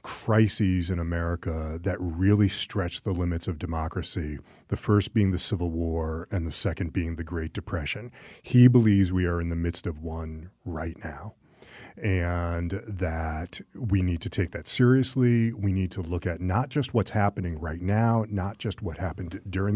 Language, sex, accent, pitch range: English, male, American, 85-105 Hz